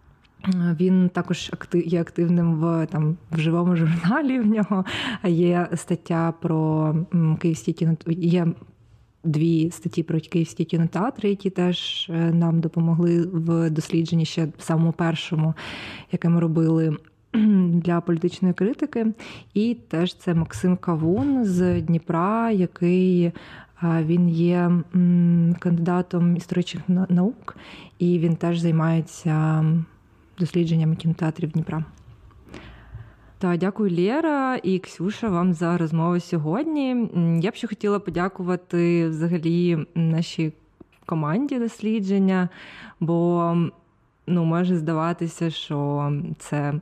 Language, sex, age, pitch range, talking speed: Ukrainian, female, 20-39, 165-180 Hz, 105 wpm